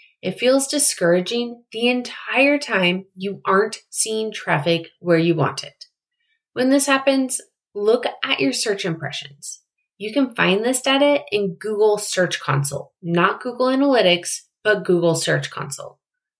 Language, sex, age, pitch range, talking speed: English, female, 20-39, 175-245 Hz, 140 wpm